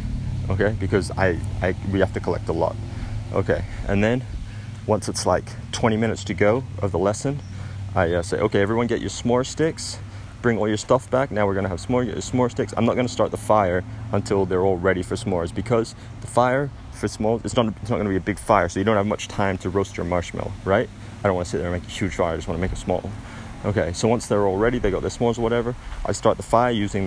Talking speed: 270 wpm